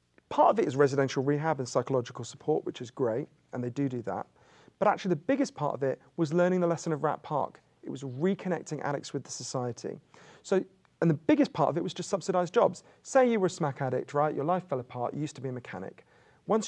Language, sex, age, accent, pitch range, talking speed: English, male, 40-59, British, 135-175 Hz, 240 wpm